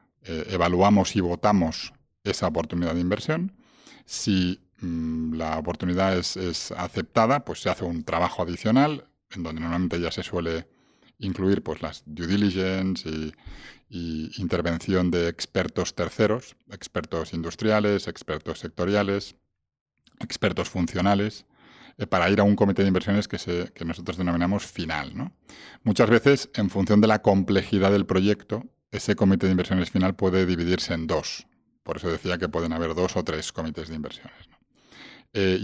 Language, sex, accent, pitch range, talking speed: Spanish, male, Spanish, 85-100 Hz, 150 wpm